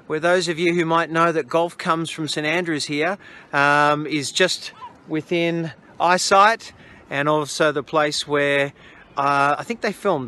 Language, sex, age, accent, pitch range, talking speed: English, male, 40-59, Australian, 140-170 Hz, 170 wpm